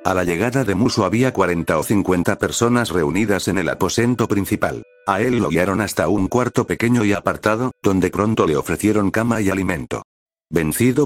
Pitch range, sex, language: 90-115 Hz, male, Spanish